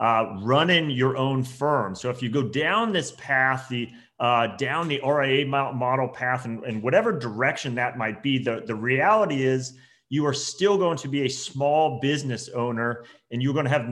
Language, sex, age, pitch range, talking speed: English, male, 30-49, 120-145 Hz, 195 wpm